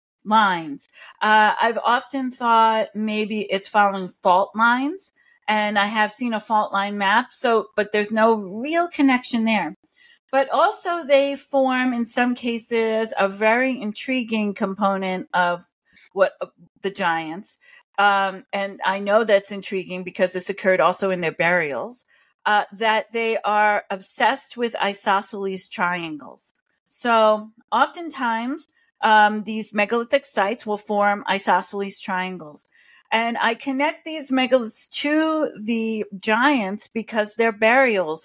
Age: 40-59